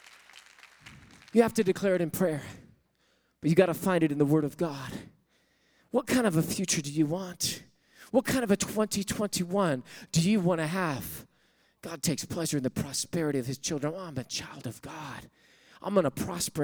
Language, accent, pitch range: English, American, 135-185 Hz